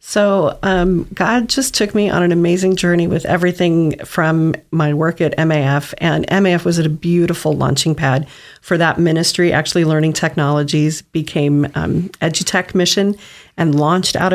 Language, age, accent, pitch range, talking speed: English, 40-59, American, 155-180 Hz, 155 wpm